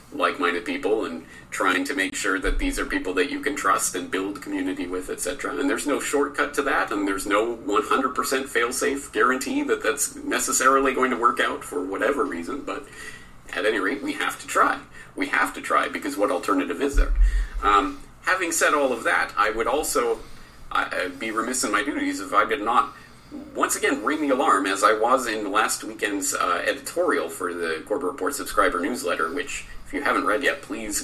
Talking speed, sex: 205 wpm, male